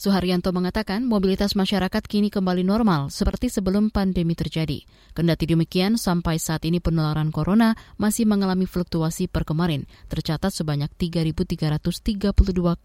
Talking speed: 115 wpm